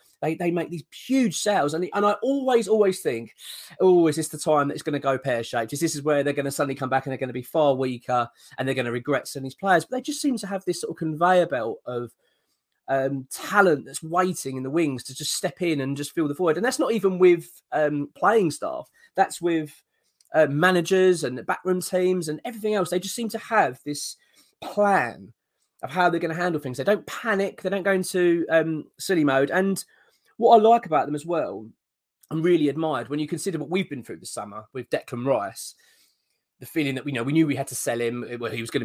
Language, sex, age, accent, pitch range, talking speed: English, male, 20-39, British, 130-185 Hz, 245 wpm